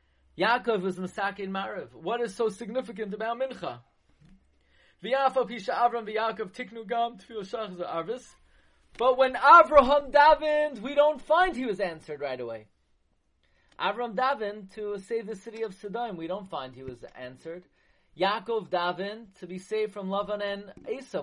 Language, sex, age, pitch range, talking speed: English, male, 30-49, 200-270 Hz, 125 wpm